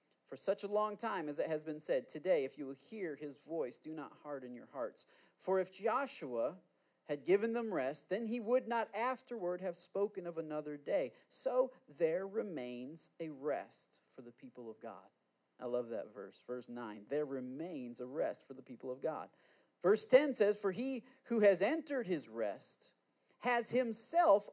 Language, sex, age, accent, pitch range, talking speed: English, male, 40-59, American, 145-235 Hz, 185 wpm